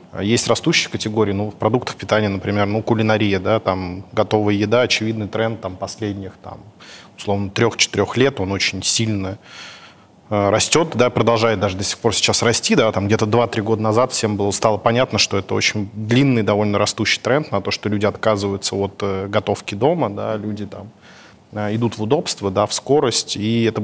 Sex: male